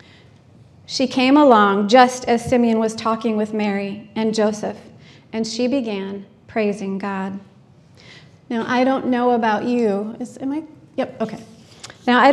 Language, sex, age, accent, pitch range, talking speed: English, female, 30-49, American, 210-255 Hz, 145 wpm